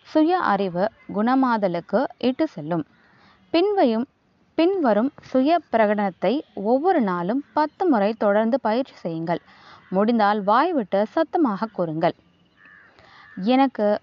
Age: 20-39